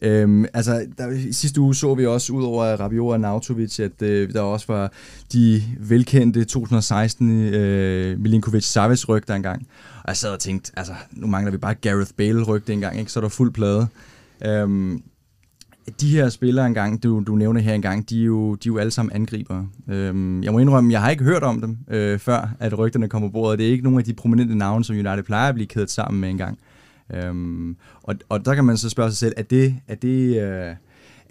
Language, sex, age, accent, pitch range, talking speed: Danish, male, 20-39, native, 100-115 Hz, 215 wpm